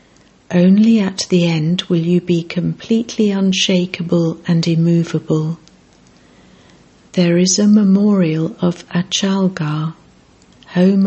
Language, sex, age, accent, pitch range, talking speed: English, female, 60-79, British, 160-190 Hz, 100 wpm